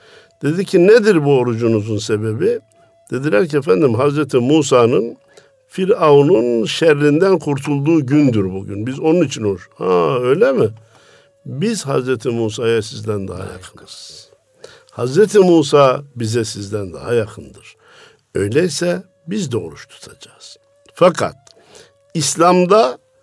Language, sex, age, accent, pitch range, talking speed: Turkish, male, 50-69, native, 115-175 Hz, 110 wpm